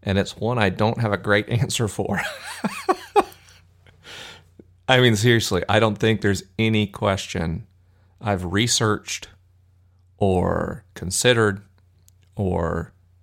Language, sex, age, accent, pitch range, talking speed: English, male, 40-59, American, 90-110 Hz, 110 wpm